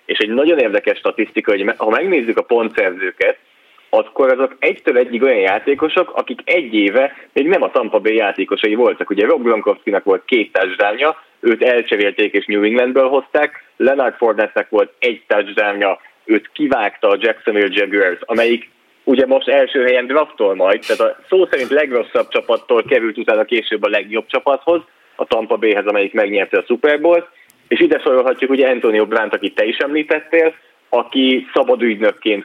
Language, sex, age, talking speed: Hungarian, male, 30-49, 160 wpm